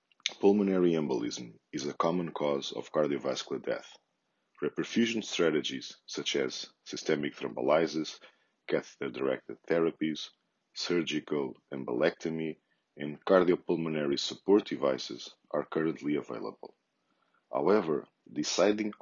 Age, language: 40-59, Portuguese